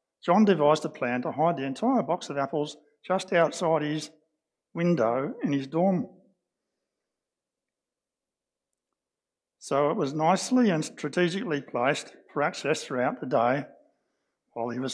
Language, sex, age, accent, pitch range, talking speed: English, male, 60-79, Australian, 135-180 Hz, 135 wpm